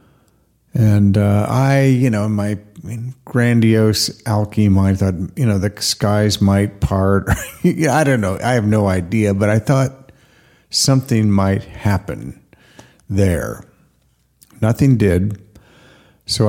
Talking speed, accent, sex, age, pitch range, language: 135 wpm, American, male, 50-69, 95-115 Hz, English